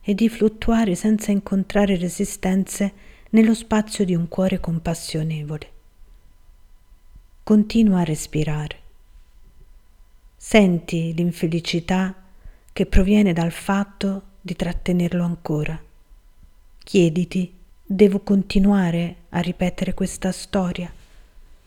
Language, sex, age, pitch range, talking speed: Italian, female, 40-59, 155-200 Hz, 85 wpm